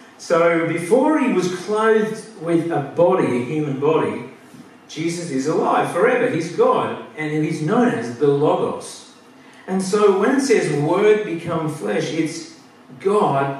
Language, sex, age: English, male, 50-69